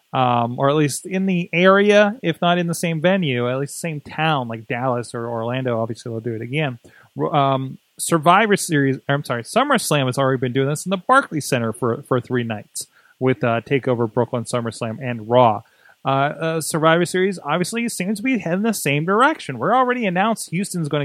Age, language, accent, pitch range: 30-49, English, American, 140-200 Hz